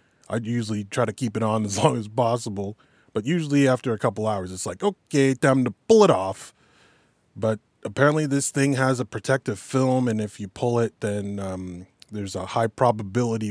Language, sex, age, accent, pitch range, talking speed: English, male, 20-39, American, 110-140 Hz, 195 wpm